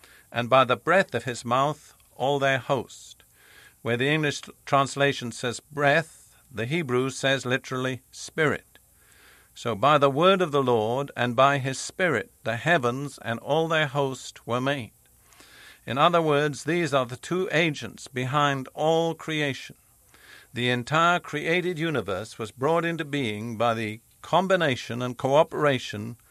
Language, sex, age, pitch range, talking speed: English, male, 50-69, 120-150 Hz, 145 wpm